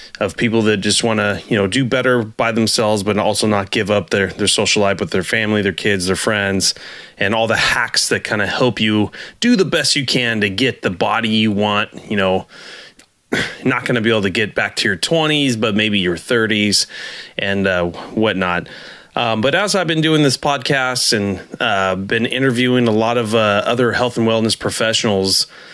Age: 30-49